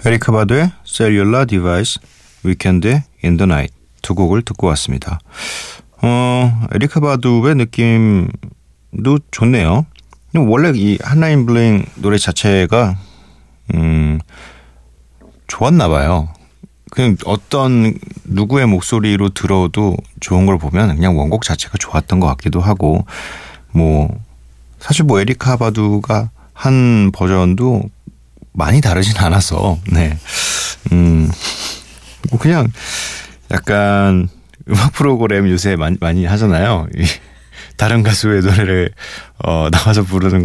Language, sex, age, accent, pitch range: Korean, male, 40-59, native, 85-115 Hz